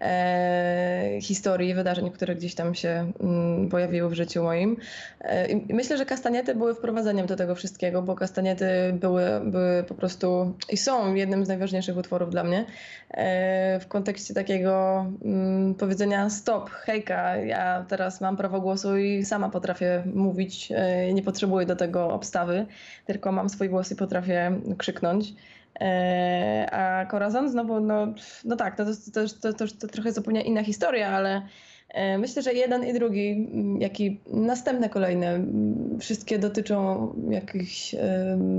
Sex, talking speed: female, 150 wpm